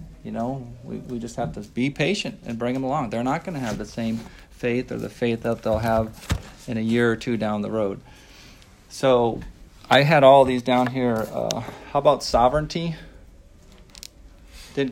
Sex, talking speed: male, 190 wpm